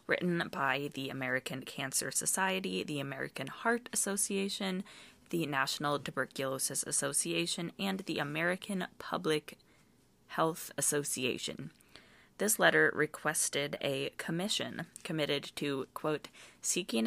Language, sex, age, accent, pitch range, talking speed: English, female, 20-39, American, 145-190 Hz, 100 wpm